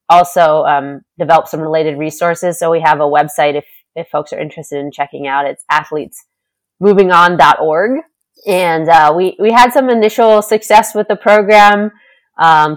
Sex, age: female, 20-39